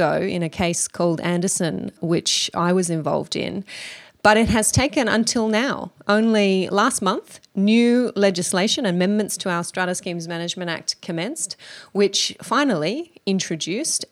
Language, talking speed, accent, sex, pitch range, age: English, 135 wpm, Australian, female, 175-215 Hz, 30-49